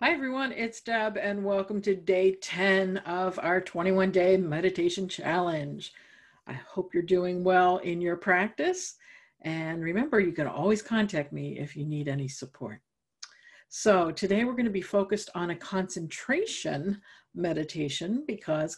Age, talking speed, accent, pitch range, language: 50-69, 145 wpm, American, 160-205 Hz, English